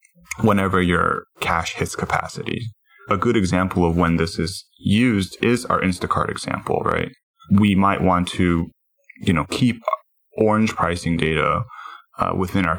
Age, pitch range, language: 10-29, 85-105 Hz, English